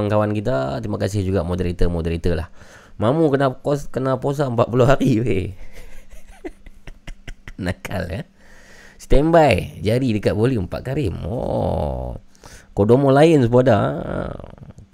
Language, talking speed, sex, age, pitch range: Malay, 115 wpm, male, 20-39, 90-120 Hz